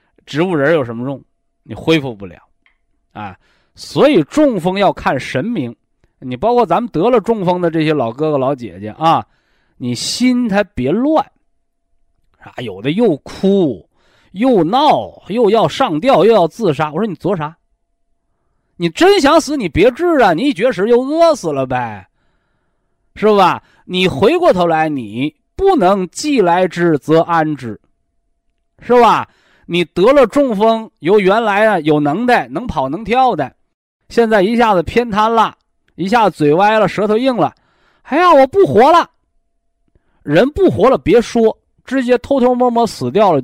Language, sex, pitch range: Chinese, male, 155-255 Hz